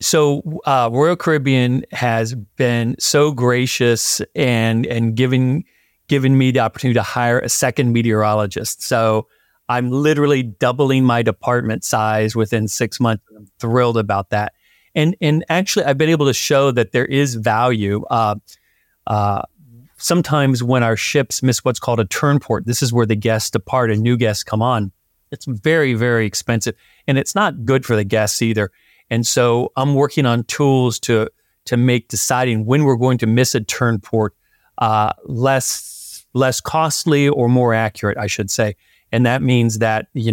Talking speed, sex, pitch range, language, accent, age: 170 wpm, male, 110-135 Hz, English, American, 40-59